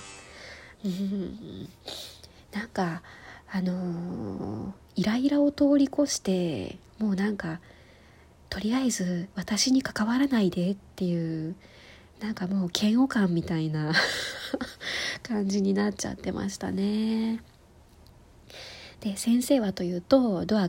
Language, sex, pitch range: Japanese, female, 180-220 Hz